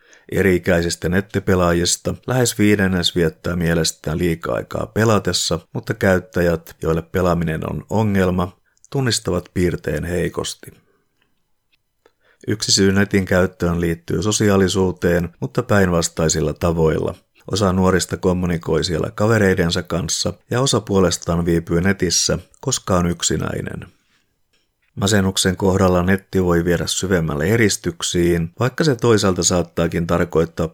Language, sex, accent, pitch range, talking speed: Finnish, male, native, 85-100 Hz, 105 wpm